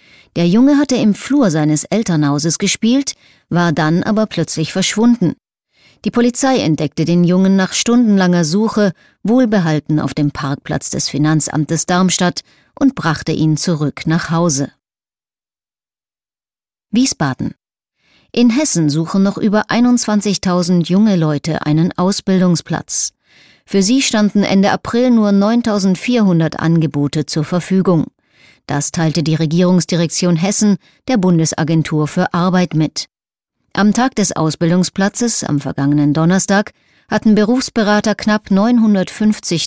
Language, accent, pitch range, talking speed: German, German, 160-210 Hz, 115 wpm